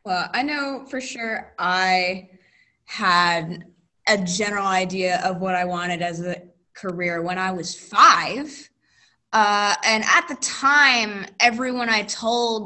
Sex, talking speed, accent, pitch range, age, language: female, 140 wpm, American, 180-240 Hz, 20-39, English